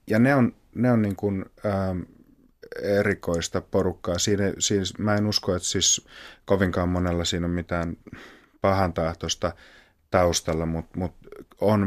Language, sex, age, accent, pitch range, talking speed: Finnish, male, 30-49, native, 85-95 Hz, 135 wpm